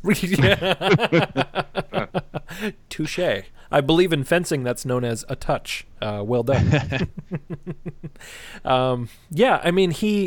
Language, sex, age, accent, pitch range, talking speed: English, male, 30-49, American, 120-155 Hz, 115 wpm